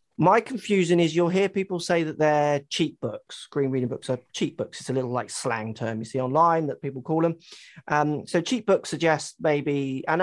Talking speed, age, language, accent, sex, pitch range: 215 wpm, 30-49, English, British, male, 135-175 Hz